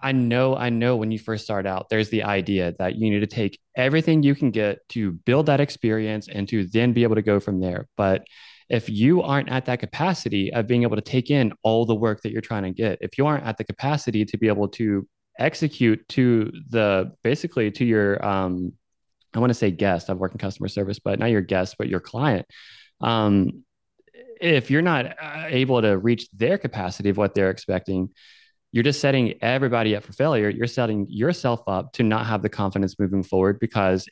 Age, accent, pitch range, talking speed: 20-39, American, 100-125 Hz, 215 wpm